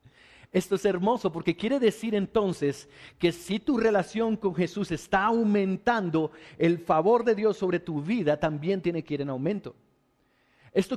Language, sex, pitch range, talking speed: English, male, 165-220 Hz, 160 wpm